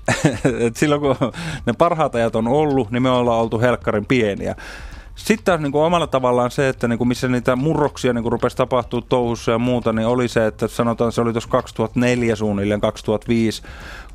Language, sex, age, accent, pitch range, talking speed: Finnish, male, 30-49, native, 105-135 Hz, 180 wpm